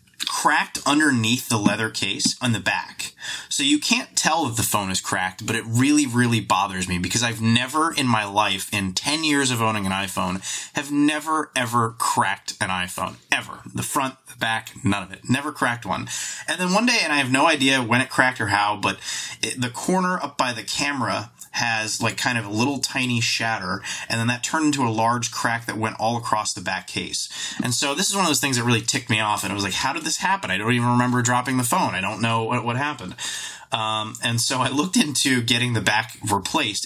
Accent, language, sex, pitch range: American, English, male, 105-140 Hz